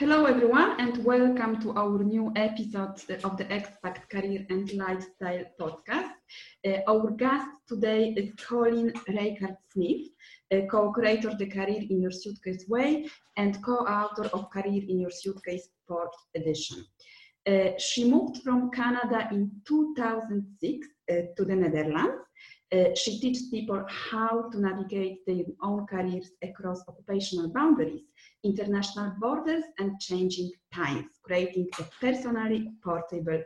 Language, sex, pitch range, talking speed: English, female, 185-245 Hz, 130 wpm